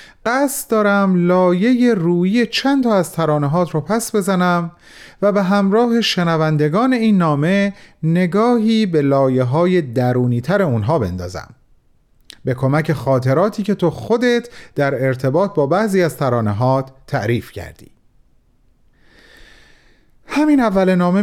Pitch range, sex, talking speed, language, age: 145-195 Hz, male, 120 wpm, Persian, 40-59